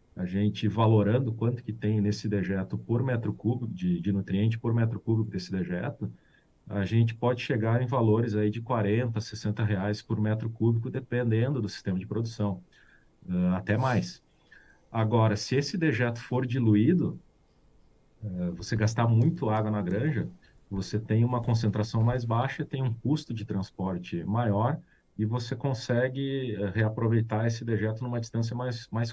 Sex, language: male, Portuguese